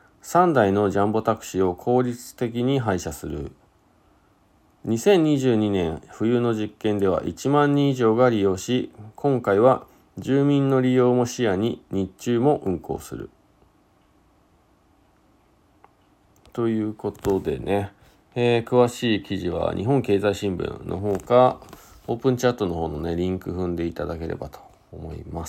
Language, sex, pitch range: Japanese, male, 95-125 Hz